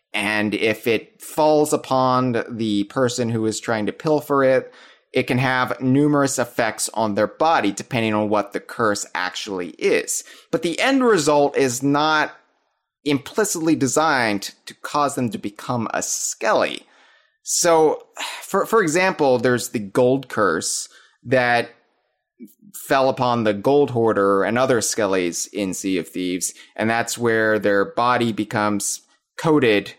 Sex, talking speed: male, 140 wpm